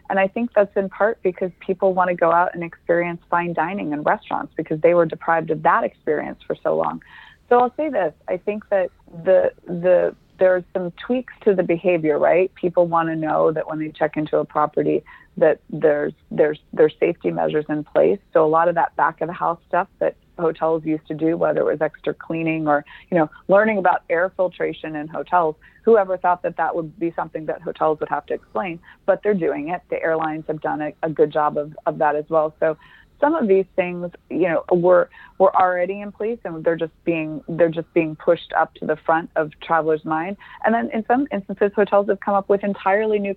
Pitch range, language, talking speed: 160-195 Hz, English, 225 wpm